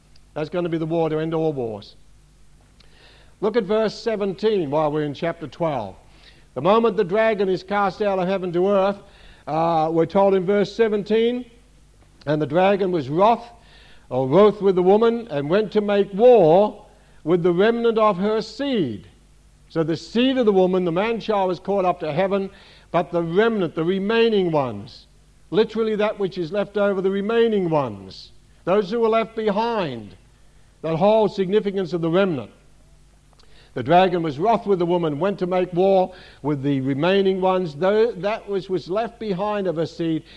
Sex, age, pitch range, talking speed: male, 60-79, 165-210 Hz, 180 wpm